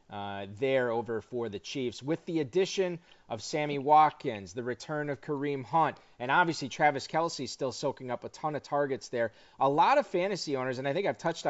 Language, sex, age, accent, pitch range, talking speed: English, male, 30-49, American, 125-160 Hz, 205 wpm